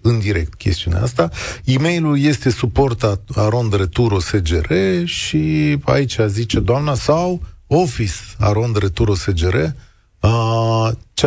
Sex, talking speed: male, 110 wpm